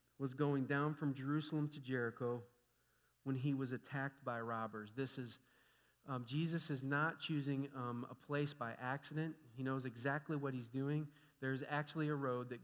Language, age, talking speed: English, 40-59, 170 wpm